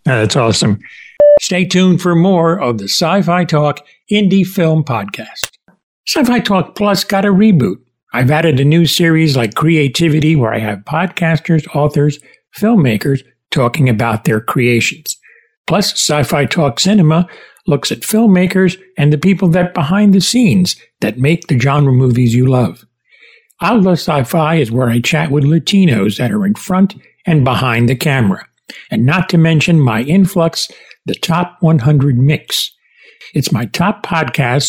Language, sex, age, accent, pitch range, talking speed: English, male, 60-79, American, 135-185 Hz, 150 wpm